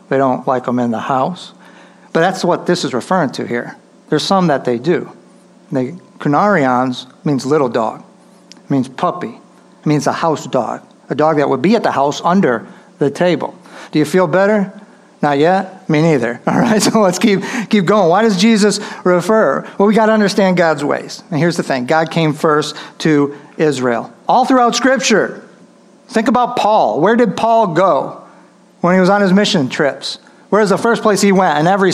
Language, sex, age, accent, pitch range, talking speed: English, male, 50-69, American, 165-215 Hz, 195 wpm